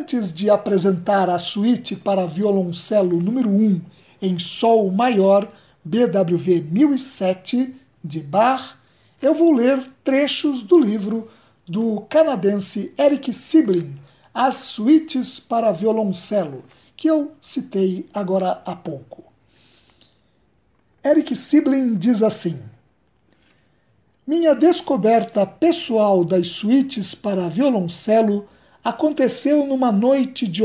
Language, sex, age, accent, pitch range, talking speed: Portuguese, male, 60-79, Brazilian, 190-265 Hz, 100 wpm